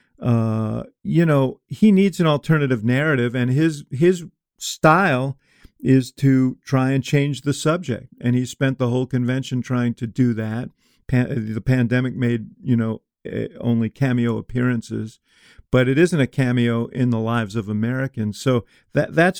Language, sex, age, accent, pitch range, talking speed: English, male, 50-69, American, 115-135 Hz, 160 wpm